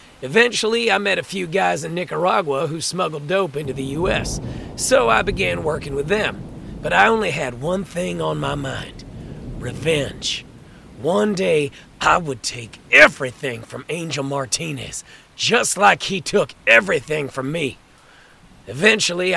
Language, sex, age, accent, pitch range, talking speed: Swedish, male, 40-59, American, 140-195 Hz, 145 wpm